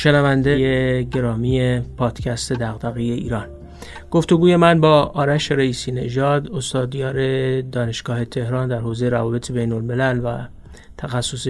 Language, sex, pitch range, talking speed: Persian, male, 120-135 Hz, 110 wpm